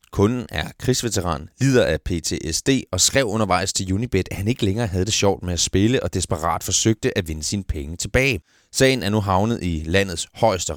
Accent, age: native, 30-49